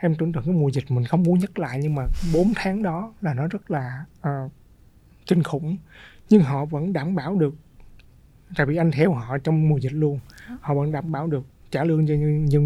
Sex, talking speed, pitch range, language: male, 220 wpm, 135-175 Hz, Vietnamese